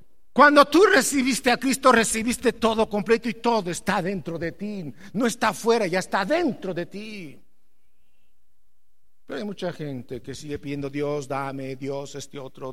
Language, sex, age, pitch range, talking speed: English, male, 50-69, 120-190 Hz, 160 wpm